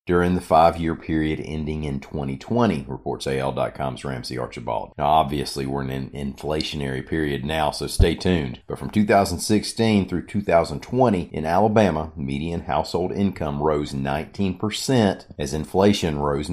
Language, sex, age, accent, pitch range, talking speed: English, male, 40-59, American, 70-90 Hz, 140 wpm